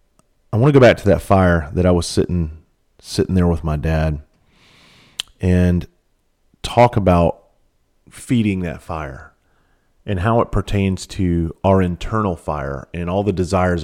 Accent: American